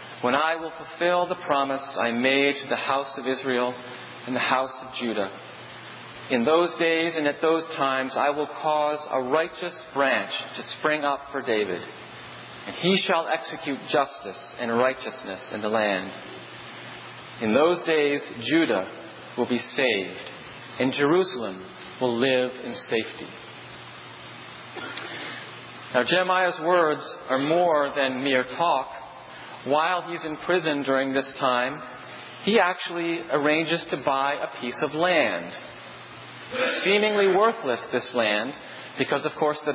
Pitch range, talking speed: 130-165 Hz, 135 wpm